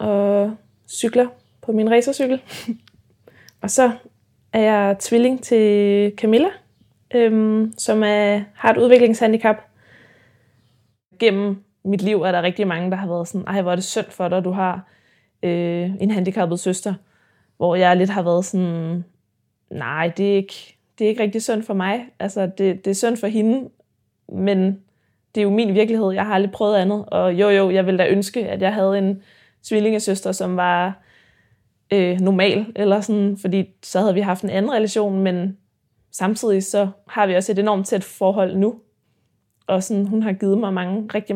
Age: 20-39